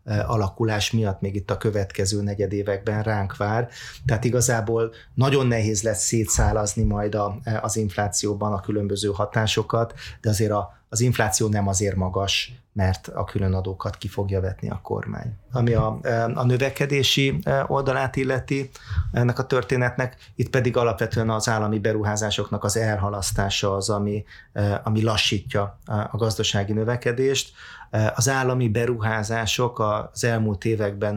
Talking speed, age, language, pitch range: 135 wpm, 30-49, Hungarian, 105-120 Hz